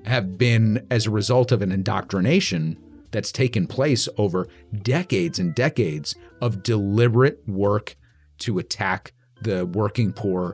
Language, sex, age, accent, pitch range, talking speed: English, male, 40-59, American, 95-120 Hz, 130 wpm